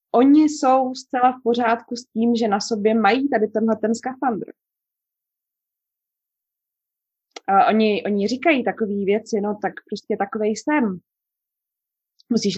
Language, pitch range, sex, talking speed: Czech, 200-245 Hz, female, 130 wpm